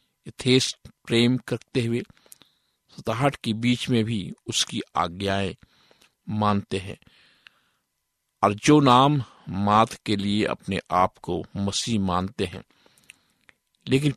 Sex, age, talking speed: male, 50-69, 105 wpm